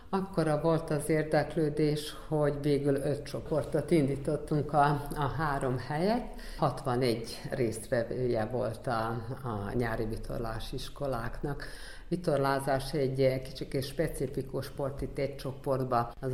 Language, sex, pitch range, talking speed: Hungarian, female, 120-150 Hz, 110 wpm